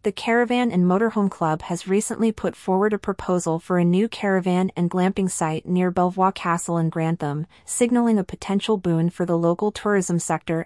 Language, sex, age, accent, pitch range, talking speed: English, female, 30-49, American, 170-205 Hz, 180 wpm